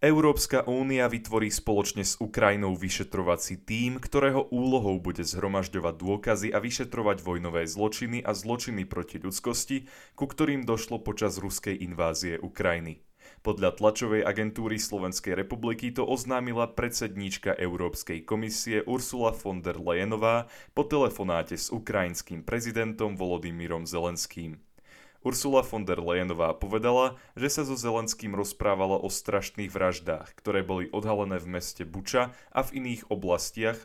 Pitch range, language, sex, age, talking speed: 90-120 Hz, Slovak, male, 20-39, 130 wpm